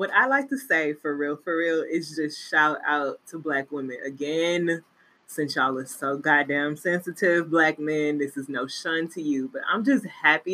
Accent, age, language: American, 20-39, English